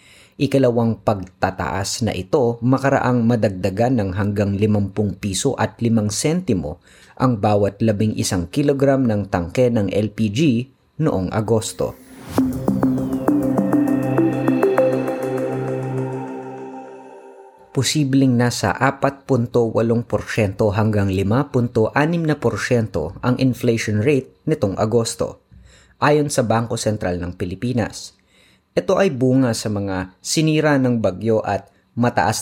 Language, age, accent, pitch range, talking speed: Filipino, 30-49, native, 100-130 Hz, 100 wpm